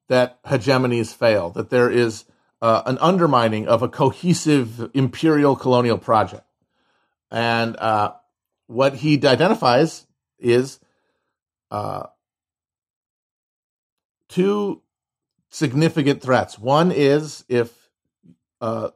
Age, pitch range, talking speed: 40-59, 115-145 Hz, 90 wpm